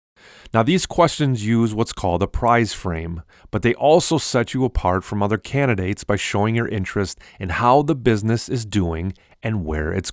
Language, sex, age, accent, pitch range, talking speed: English, male, 30-49, American, 90-130 Hz, 185 wpm